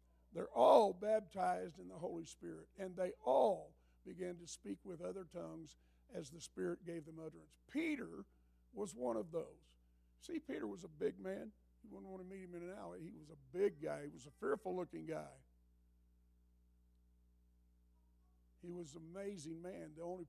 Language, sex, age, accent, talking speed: English, male, 50-69, American, 175 wpm